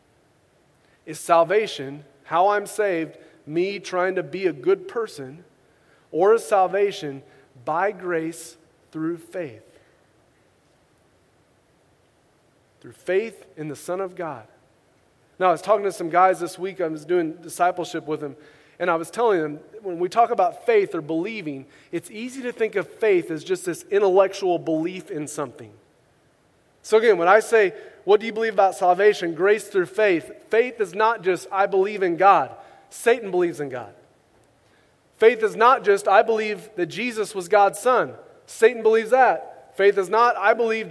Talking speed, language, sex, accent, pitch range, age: 165 wpm, English, male, American, 170-220 Hz, 30-49